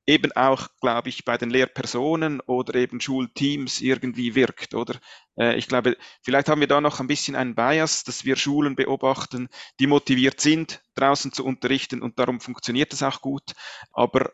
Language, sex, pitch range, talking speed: English, male, 130-160 Hz, 170 wpm